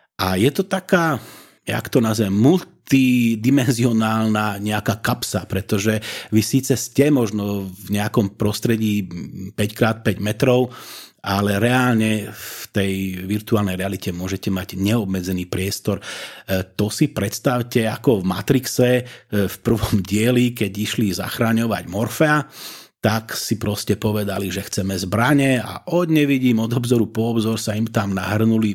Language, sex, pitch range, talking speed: Slovak, male, 100-120 Hz, 125 wpm